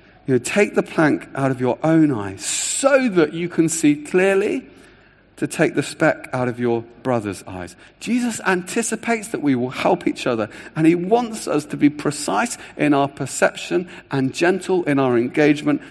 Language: English